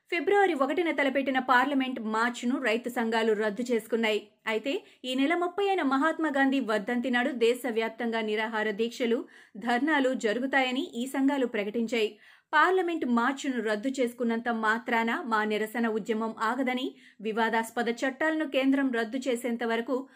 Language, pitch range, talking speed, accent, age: Telugu, 230-275 Hz, 115 wpm, native, 30-49